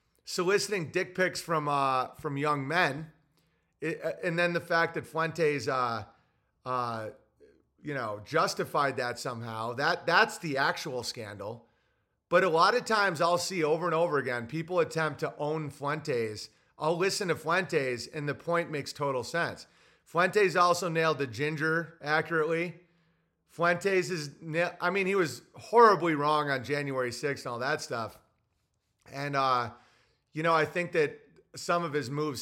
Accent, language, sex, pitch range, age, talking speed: American, English, male, 130-170 Hz, 30-49, 160 wpm